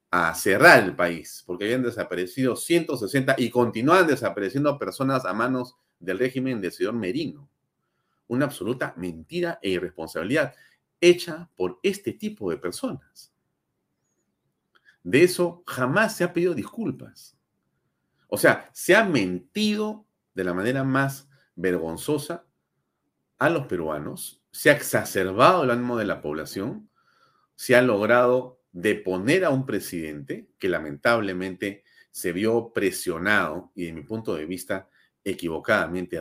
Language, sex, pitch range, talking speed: Spanish, male, 90-135 Hz, 130 wpm